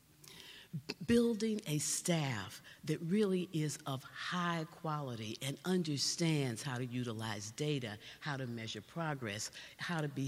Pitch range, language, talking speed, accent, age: 150-195 Hz, English, 130 wpm, American, 50-69